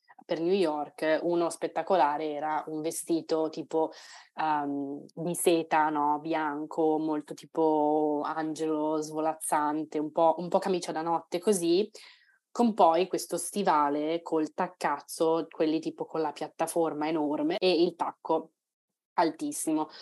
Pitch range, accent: 150-175 Hz, native